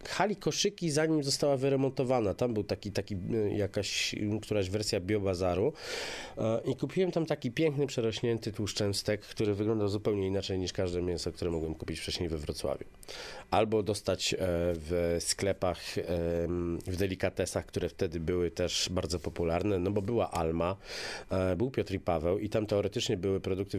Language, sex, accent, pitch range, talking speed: Polish, male, native, 90-110 Hz, 145 wpm